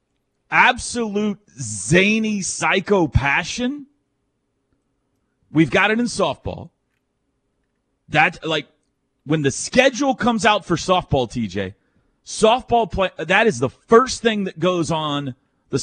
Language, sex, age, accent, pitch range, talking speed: English, male, 40-59, American, 125-180 Hz, 115 wpm